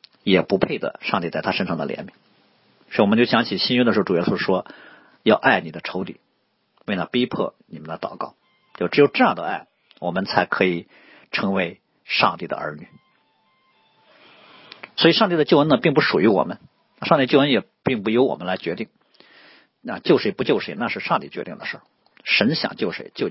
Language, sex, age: Chinese, male, 50-69